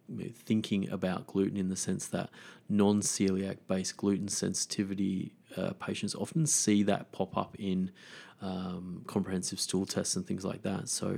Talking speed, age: 155 wpm, 30-49